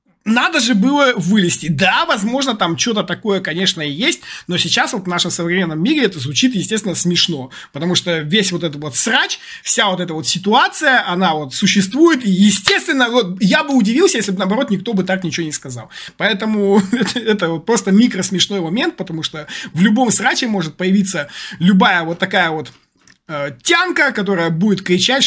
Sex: male